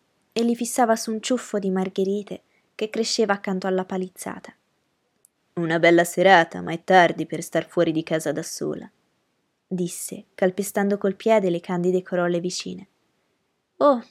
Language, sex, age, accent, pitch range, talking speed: Italian, female, 20-39, native, 185-250 Hz, 150 wpm